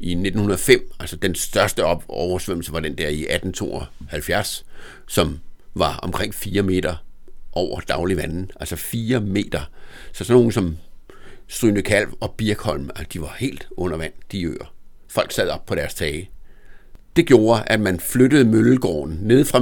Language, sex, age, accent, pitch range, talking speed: Danish, male, 60-79, native, 85-115 Hz, 155 wpm